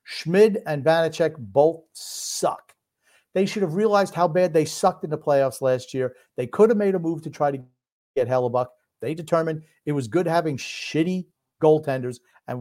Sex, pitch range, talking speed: male, 125-170 Hz, 180 wpm